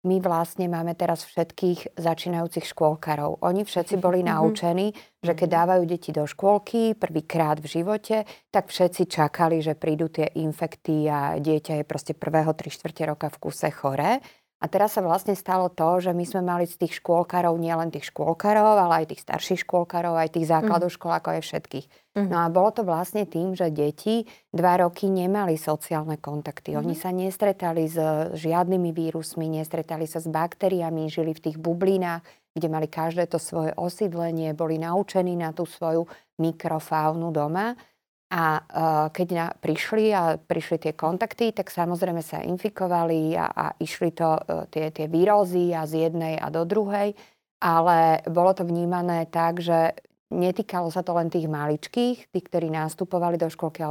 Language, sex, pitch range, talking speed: Slovak, female, 160-185 Hz, 165 wpm